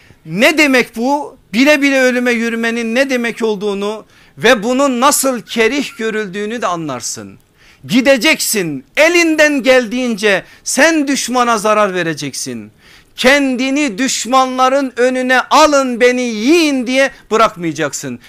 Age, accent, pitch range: 50-69, native, 150-250 Hz